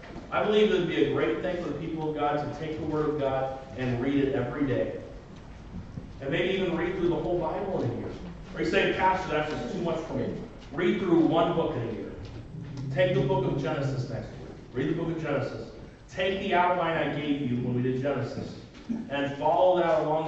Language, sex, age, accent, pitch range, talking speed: English, male, 40-59, American, 125-165 Hz, 230 wpm